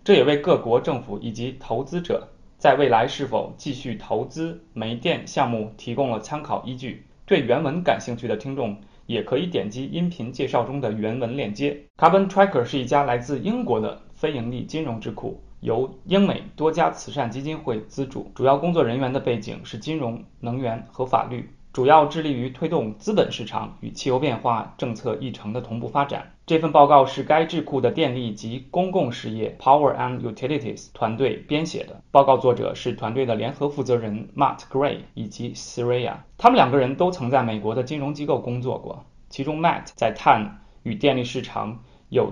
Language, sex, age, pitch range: Chinese, male, 20-39, 115-150 Hz